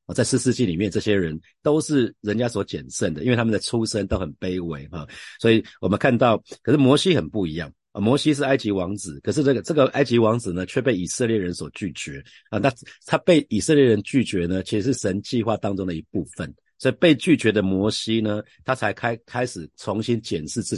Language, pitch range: Chinese, 95-125 Hz